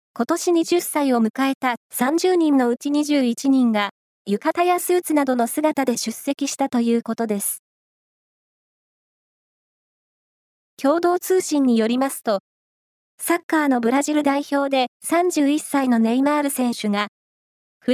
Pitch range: 245-320 Hz